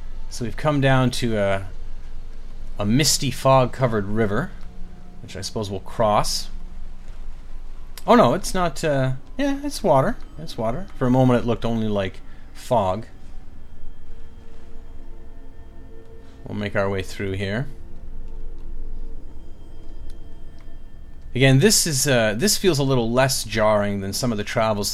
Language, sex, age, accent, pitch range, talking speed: English, male, 30-49, American, 90-120 Hz, 130 wpm